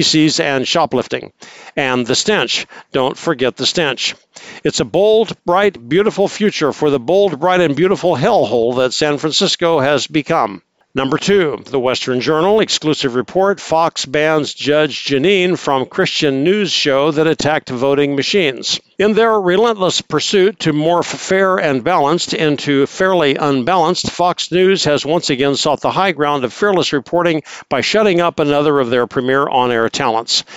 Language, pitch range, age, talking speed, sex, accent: English, 140-180 Hz, 60-79, 155 wpm, male, American